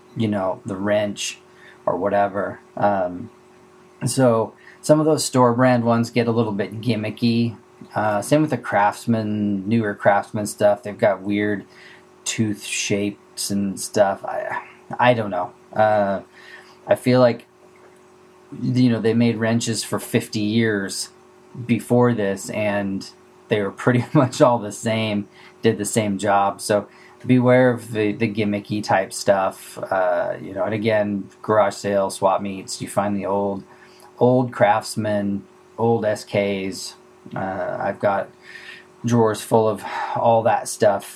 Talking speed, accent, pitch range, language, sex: 140 wpm, American, 100-120 Hz, English, male